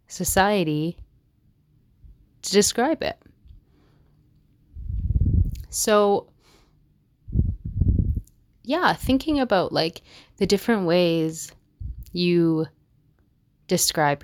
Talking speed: 60 wpm